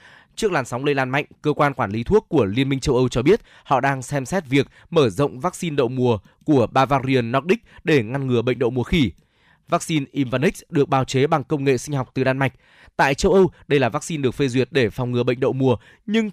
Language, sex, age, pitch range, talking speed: Vietnamese, male, 20-39, 130-165 Hz, 245 wpm